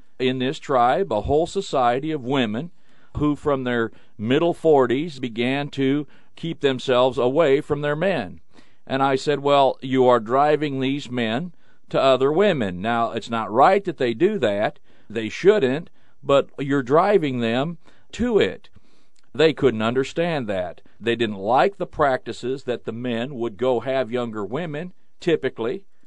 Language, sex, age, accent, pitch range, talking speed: English, male, 40-59, American, 115-145 Hz, 155 wpm